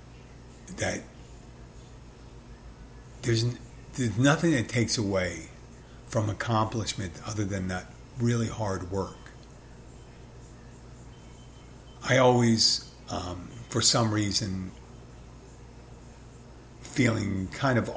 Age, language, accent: 50-69, English, American